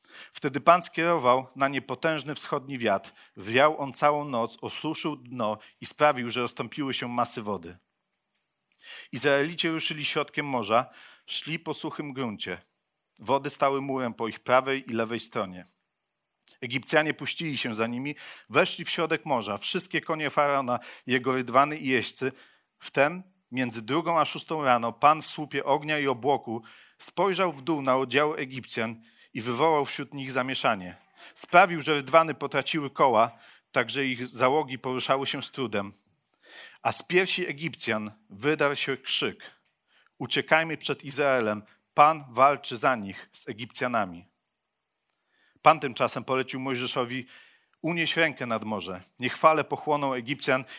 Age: 40-59